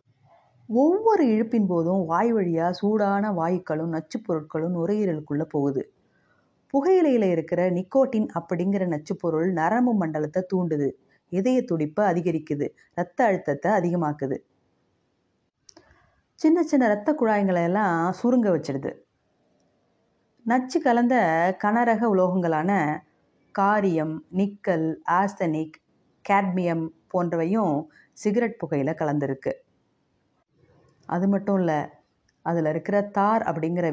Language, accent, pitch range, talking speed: Tamil, native, 155-205 Hz, 85 wpm